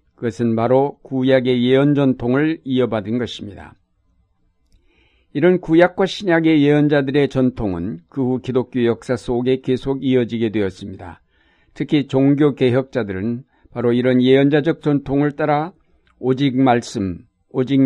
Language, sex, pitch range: Korean, male, 115-145 Hz